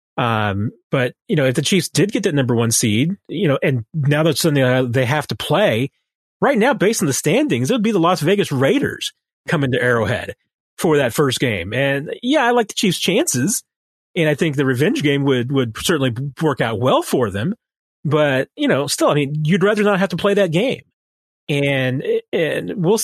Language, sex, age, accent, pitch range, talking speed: English, male, 30-49, American, 125-155 Hz, 215 wpm